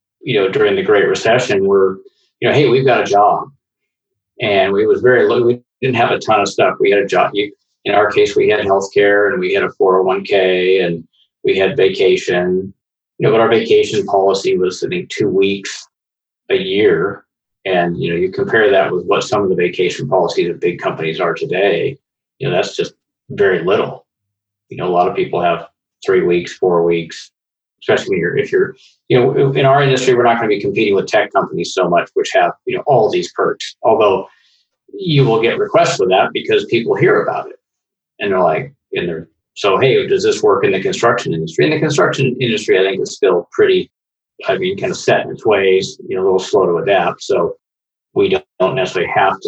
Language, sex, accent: English, male, American